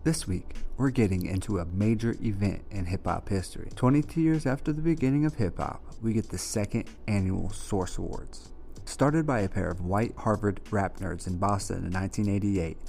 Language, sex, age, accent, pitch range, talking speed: English, male, 30-49, American, 95-115 Hz, 175 wpm